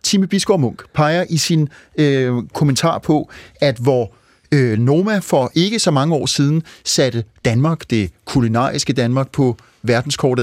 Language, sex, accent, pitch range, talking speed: Danish, male, native, 125-160 Hz, 150 wpm